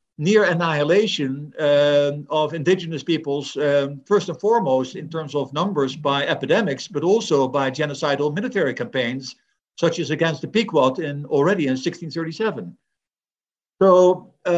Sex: male